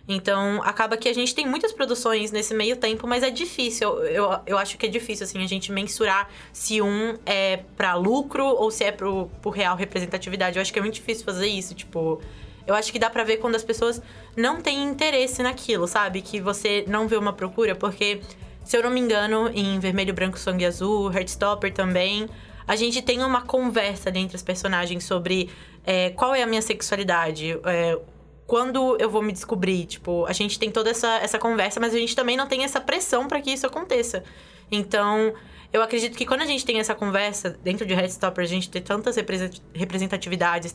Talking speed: 195 wpm